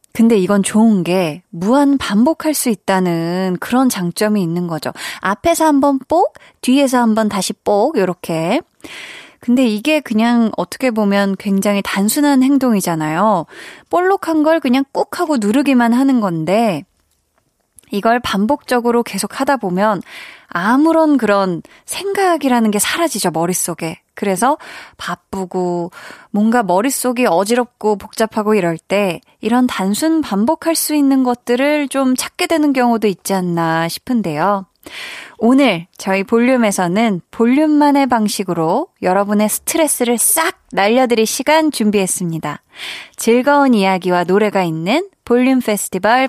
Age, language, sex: 20-39, Korean, female